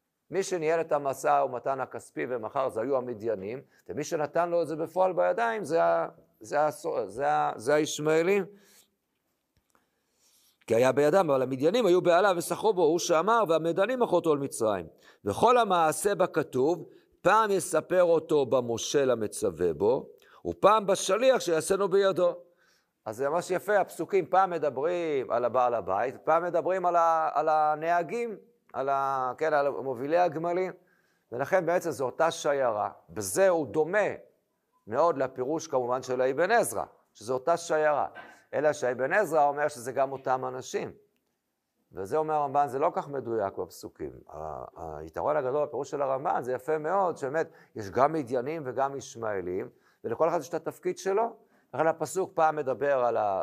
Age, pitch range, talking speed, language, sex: 50-69, 140-190 Hz, 145 wpm, Hebrew, male